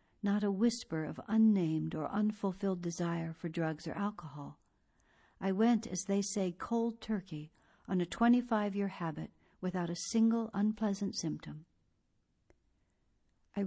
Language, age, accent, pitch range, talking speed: English, 60-79, American, 160-210 Hz, 125 wpm